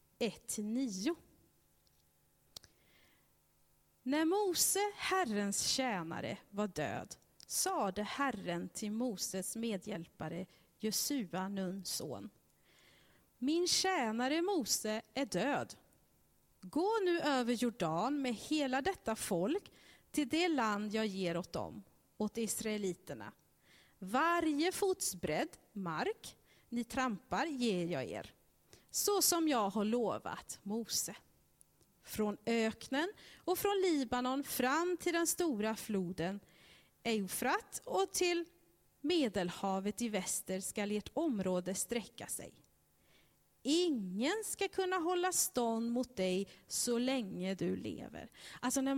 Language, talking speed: Swedish, 105 wpm